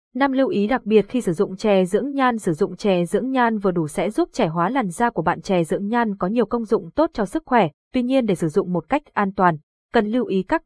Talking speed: 280 wpm